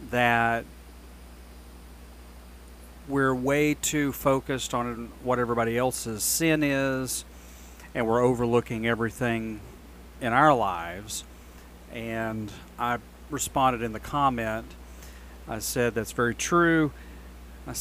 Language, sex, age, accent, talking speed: English, male, 40-59, American, 100 wpm